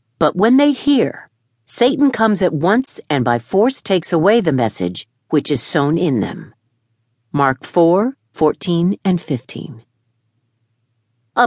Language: English